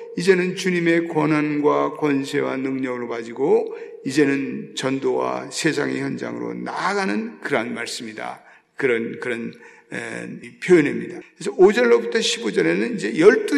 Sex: male